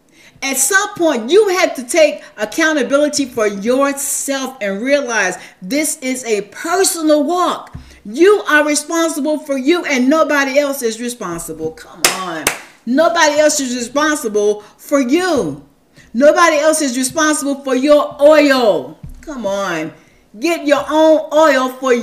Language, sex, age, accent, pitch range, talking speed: English, female, 50-69, American, 205-300 Hz, 135 wpm